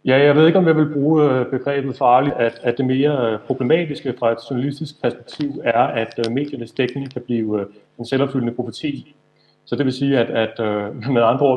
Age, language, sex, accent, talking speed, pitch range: 30-49, Danish, male, native, 195 wpm, 115-140 Hz